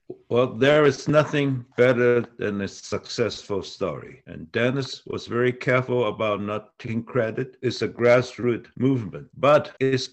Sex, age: male, 60-79